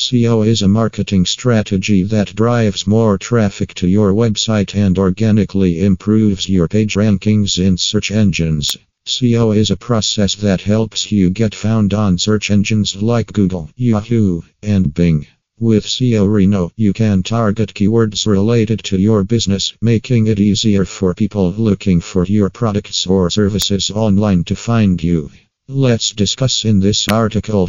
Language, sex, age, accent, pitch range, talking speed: English, male, 50-69, American, 95-110 Hz, 150 wpm